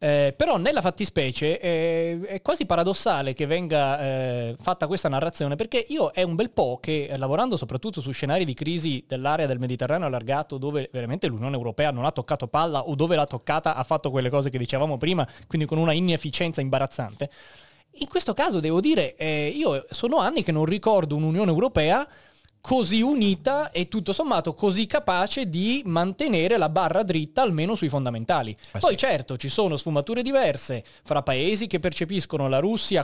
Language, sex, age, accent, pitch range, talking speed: Italian, male, 20-39, native, 140-180 Hz, 175 wpm